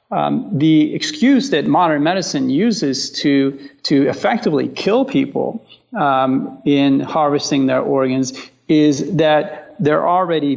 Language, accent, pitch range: English, American, 135-160 Hz